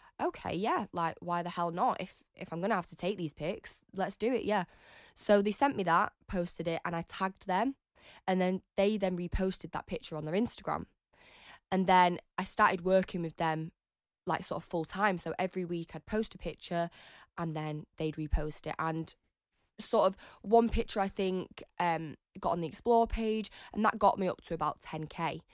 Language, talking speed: English, 200 wpm